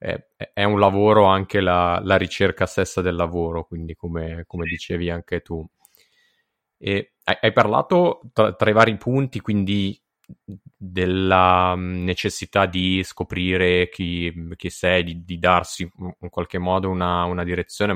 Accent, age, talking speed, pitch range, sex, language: native, 20-39, 135 wpm, 85-95 Hz, male, Italian